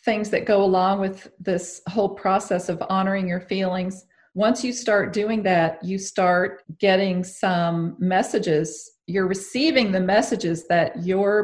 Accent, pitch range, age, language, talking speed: American, 175-195 Hz, 40-59, English, 145 wpm